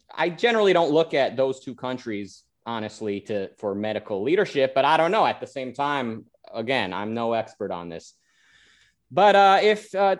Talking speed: 180 wpm